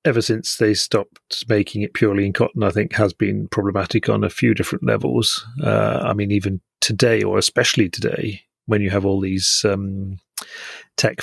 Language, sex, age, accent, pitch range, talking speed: English, male, 40-59, British, 105-120 Hz, 180 wpm